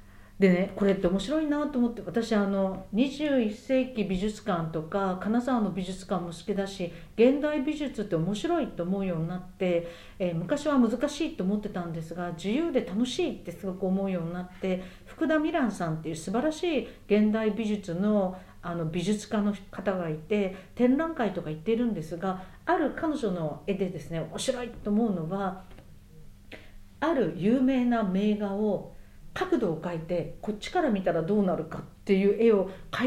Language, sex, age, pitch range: Japanese, female, 50-69, 180-245 Hz